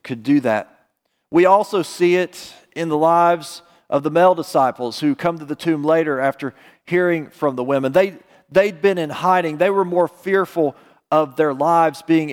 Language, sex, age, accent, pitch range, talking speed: English, male, 40-59, American, 150-190 Hz, 190 wpm